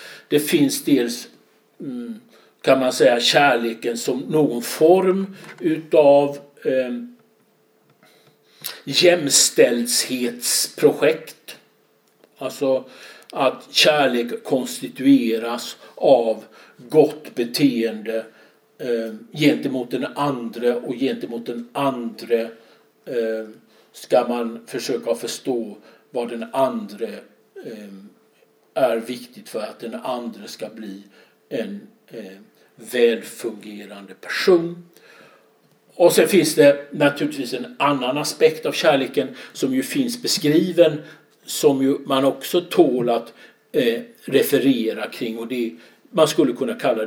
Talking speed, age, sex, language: 95 wpm, 60-79, male, English